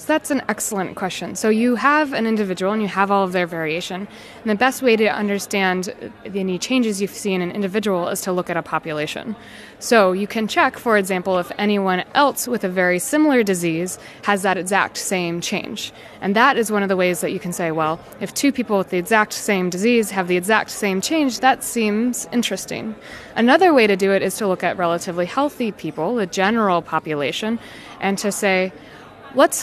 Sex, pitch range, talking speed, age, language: female, 185-230 Hz, 205 wpm, 20-39, English